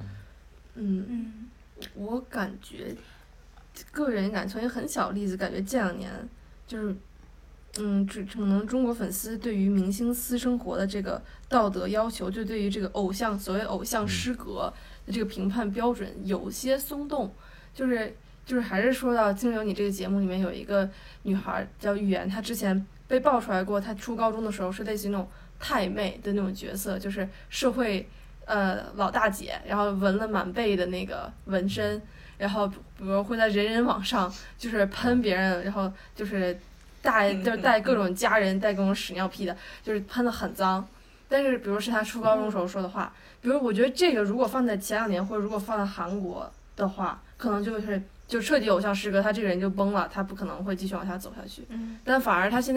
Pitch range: 195-225 Hz